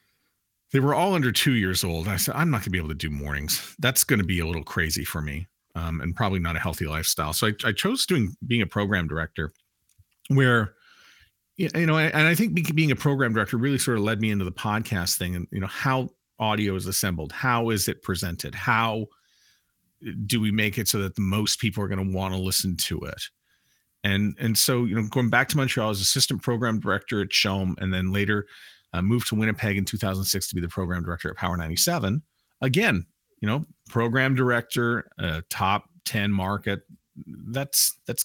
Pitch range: 95-130 Hz